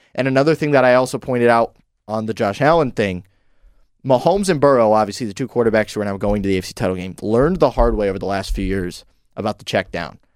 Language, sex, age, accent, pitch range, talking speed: English, male, 20-39, American, 110-140 Hz, 245 wpm